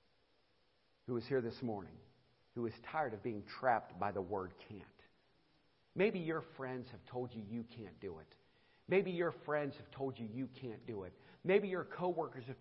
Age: 50-69